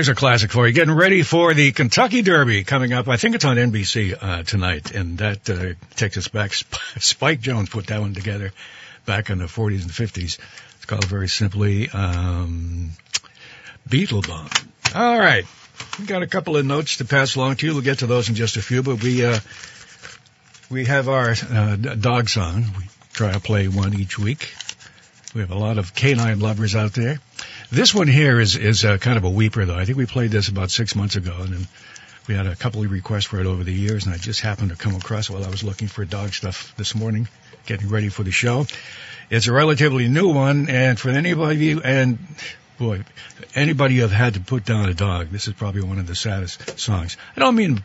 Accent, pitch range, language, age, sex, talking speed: American, 100-130 Hz, English, 60-79, male, 225 wpm